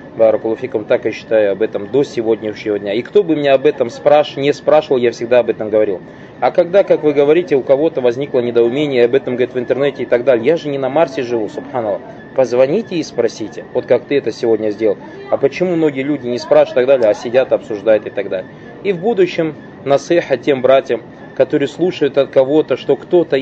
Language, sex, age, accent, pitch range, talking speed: Russian, male, 20-39, native, 125-165 Hz, 210 wpm